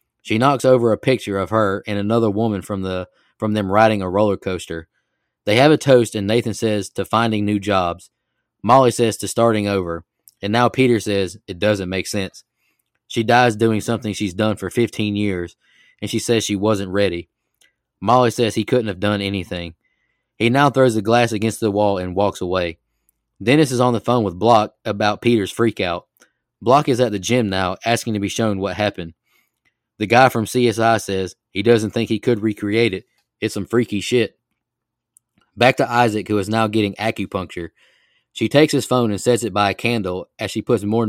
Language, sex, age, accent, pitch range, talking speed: English, male, 20-39, American, 100-120 Hz, 200 wpm